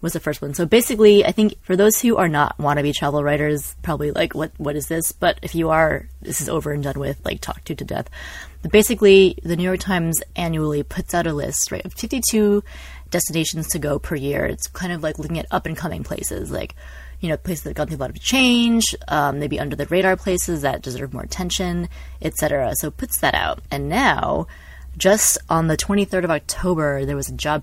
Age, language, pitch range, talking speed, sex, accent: 20-39, English, 145-180 Hz, 225 wpm, female, American